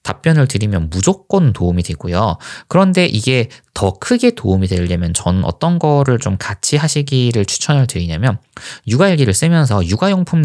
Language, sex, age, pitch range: Korean, male, 20-39, 95-150 Hz